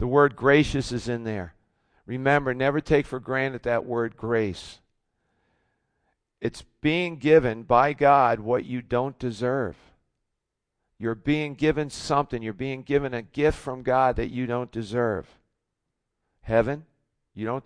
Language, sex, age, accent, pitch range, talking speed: English, male, 50-69, American, 110-130 Hz, 140 wpm